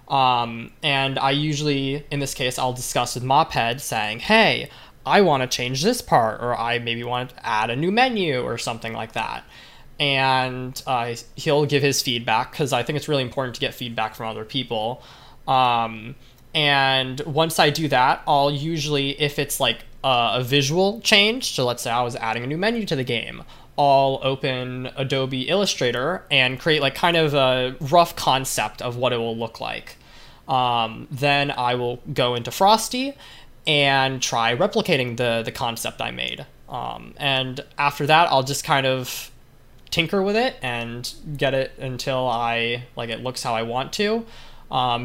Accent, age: American, 20-39